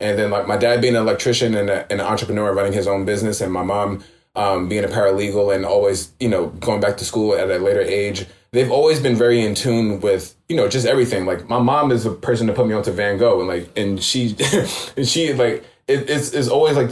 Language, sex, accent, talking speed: English, male, American, 250 wpm